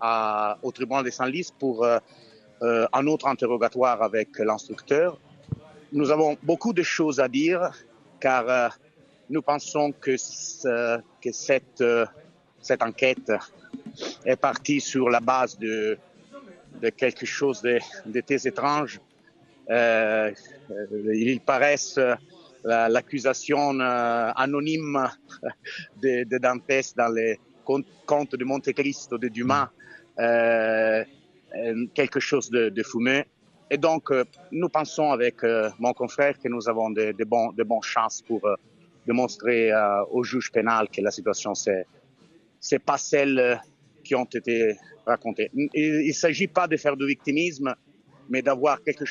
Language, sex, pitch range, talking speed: French, male, 115-145 Hz, 140 wpm